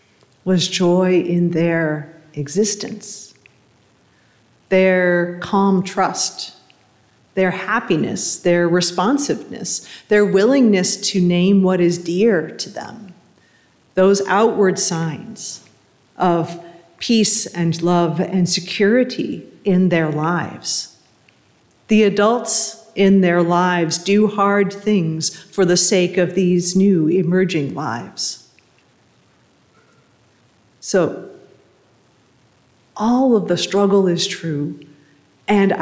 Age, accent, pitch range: 40-59, American, 170-200 Hz